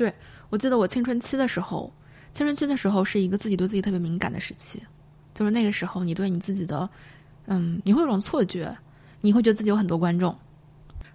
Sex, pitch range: female, 175-220 Hz